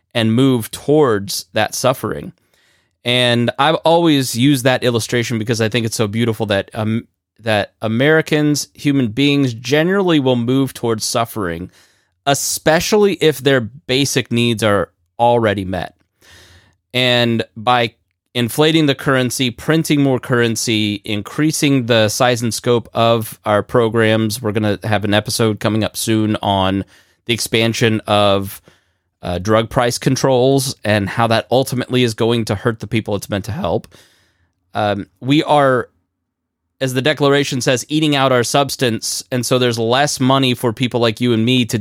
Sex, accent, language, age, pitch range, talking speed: male, American, English, 30-49, 105-135 Hz, 150 wpm